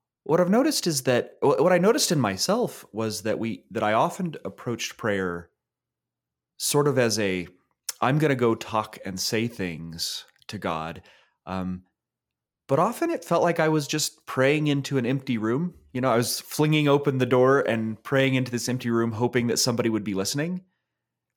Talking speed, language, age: 185 wpm, English, 30-49